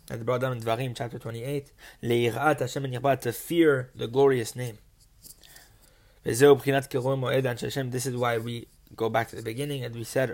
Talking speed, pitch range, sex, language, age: 170 wpm, 115-140 Hz, male, English, 20-39